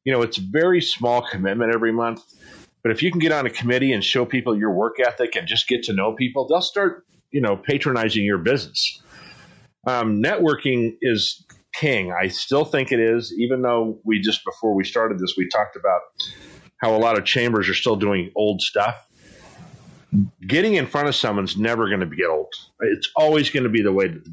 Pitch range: 110-145 Hz